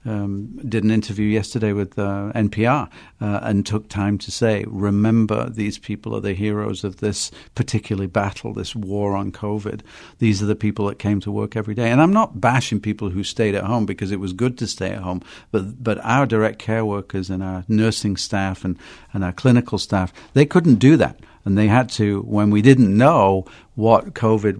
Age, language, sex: 50-69, English, male